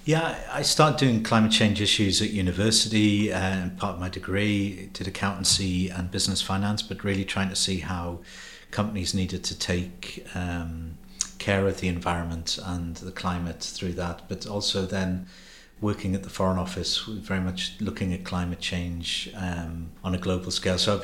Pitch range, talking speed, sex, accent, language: 90-100 Hz, 170 wpm, male, British, English